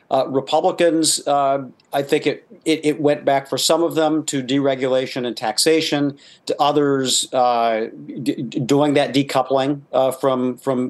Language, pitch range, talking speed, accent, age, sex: English, 130-150 Hz, 165 wpm, American, 50-69, male